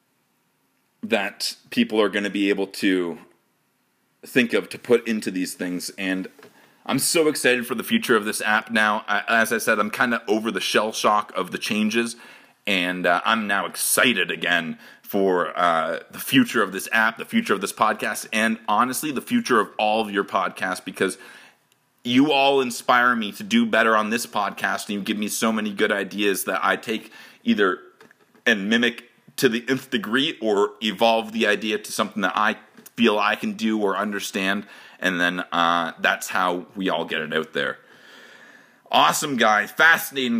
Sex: male